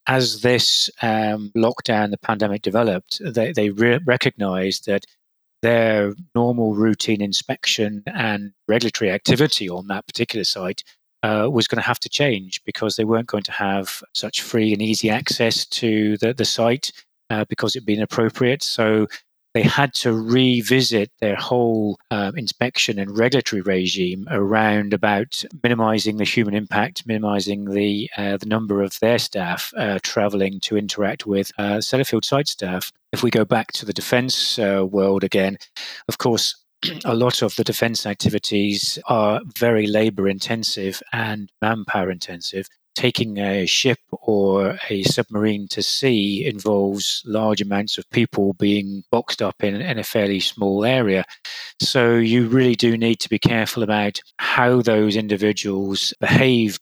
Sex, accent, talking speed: male, British, 150 wpm